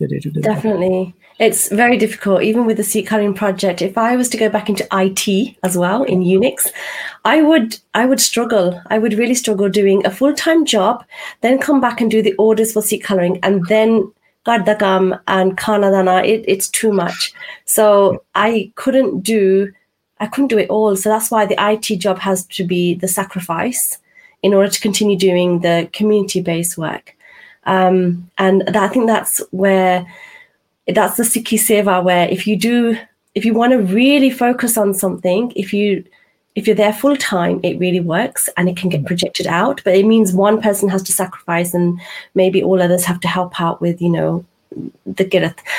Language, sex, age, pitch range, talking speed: Punjabi, female, 30-49, 185-225 Hz, 190 wpm